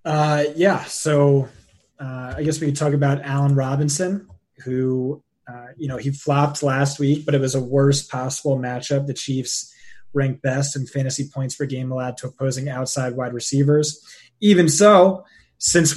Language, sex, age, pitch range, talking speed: English, male, 20-39, 130-145 Hz, 170 wpm